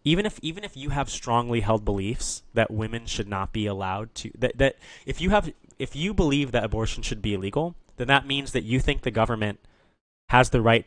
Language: English